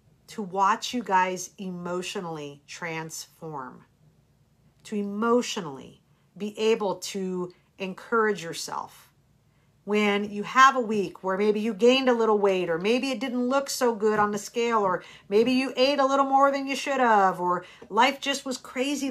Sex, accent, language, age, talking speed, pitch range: female, American, English, 50-69, 160 wpm, 175-230 Hz